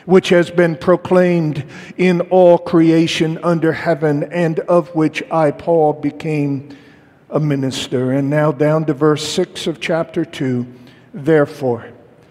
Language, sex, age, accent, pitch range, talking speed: English, male, 50-69, American, 140-175 Hz, 130 wpm